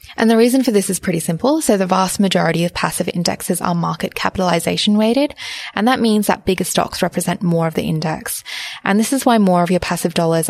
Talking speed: 215 wpm